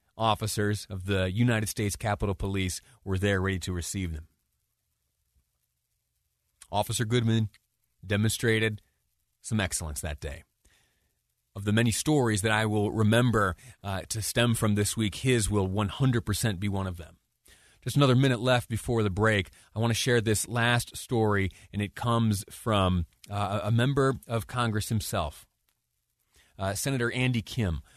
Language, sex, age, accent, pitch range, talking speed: English, male, 30-49, American, 95-125 Hz, 150 wpm